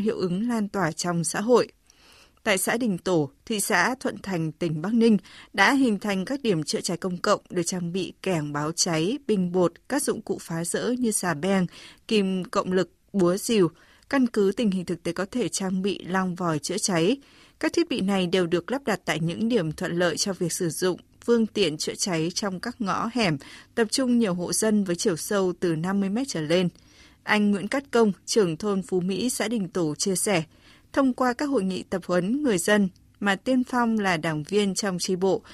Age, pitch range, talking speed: 20-39, 175-220 Hz, 220 wpm